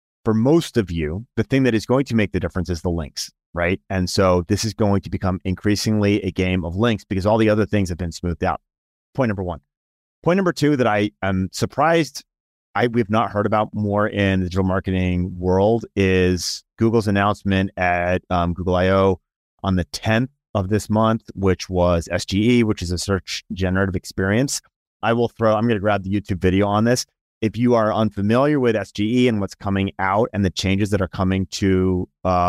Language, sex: English, male